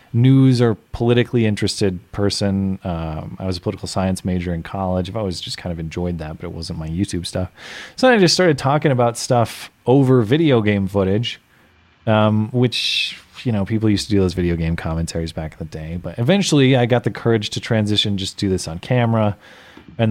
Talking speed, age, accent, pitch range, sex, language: 205 wpm, 30-49, American, 90-120 Hz, male, English